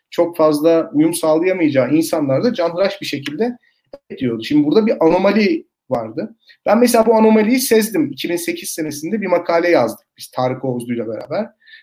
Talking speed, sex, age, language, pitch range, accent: 140 wpm, male, 40-59, Turkish, 145-230 Hz, native